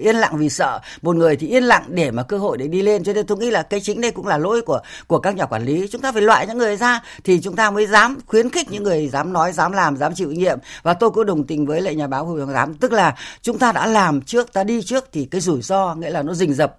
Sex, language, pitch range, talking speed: female, Vietnamese, 155-220 Hz, 305 wpm